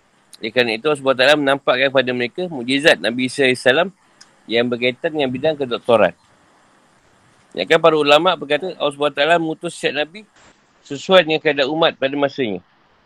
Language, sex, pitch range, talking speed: Malay, male, 130-160 Hz, 140 wpm